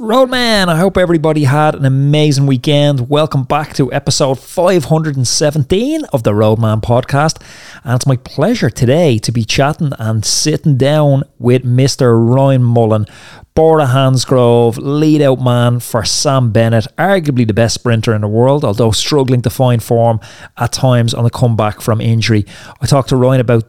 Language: English